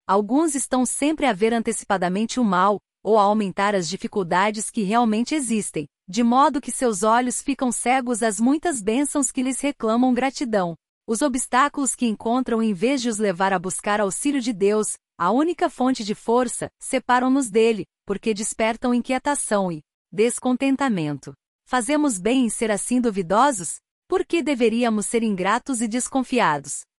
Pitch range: 205-260 Hz